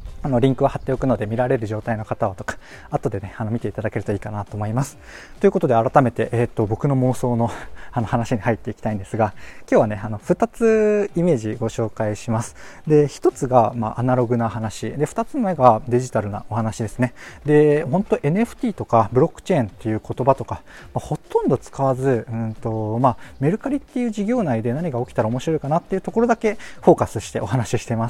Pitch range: 115-165 Hz